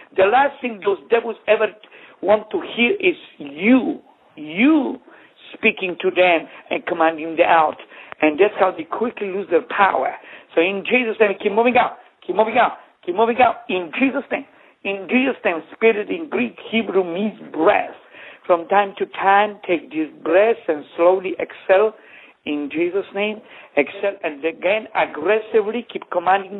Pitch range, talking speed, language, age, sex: 180-240 Hz, 160 wpm, English, 60-79, male